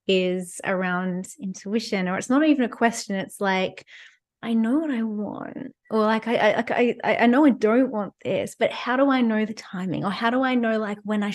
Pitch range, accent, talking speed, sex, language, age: 200-245 Hz, Australian, 220 wpm, female, English, 20-39